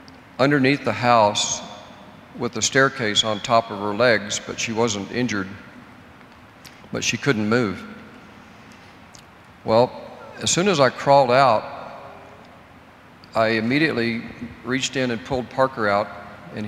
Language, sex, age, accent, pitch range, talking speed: English, male, 50-69, American, 105-125 Hz, 125 wpm